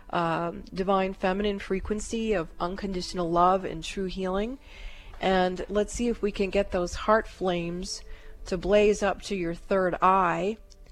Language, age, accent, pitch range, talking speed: English, 40-59, American, 175-200 Hz, 150 wpm